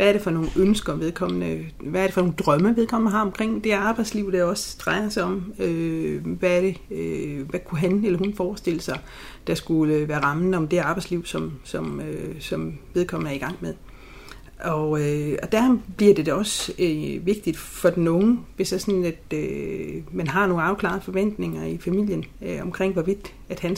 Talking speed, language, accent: 185 wpm, Danish, native